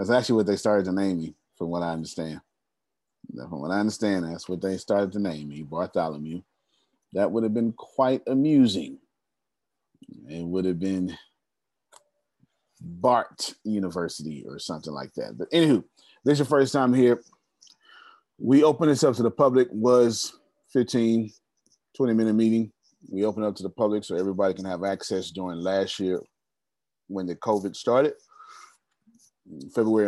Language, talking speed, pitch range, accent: English, 160 wpm, 95-115 Hz, American